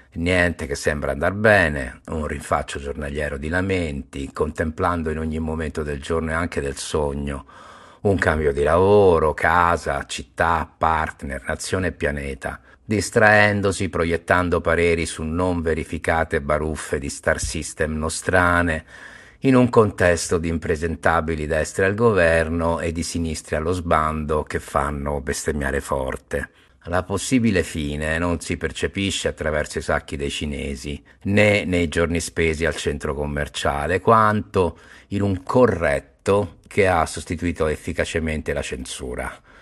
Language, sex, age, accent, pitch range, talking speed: Italian, male, 50-69, native, 80-90 Hz, 130 wpm